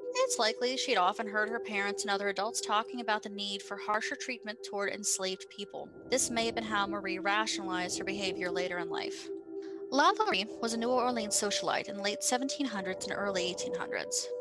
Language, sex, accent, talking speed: English, female, American, 185 wpm